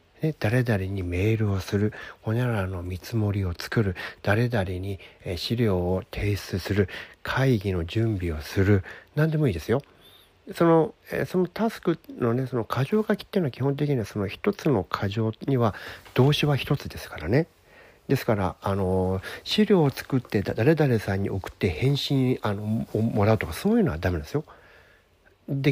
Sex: male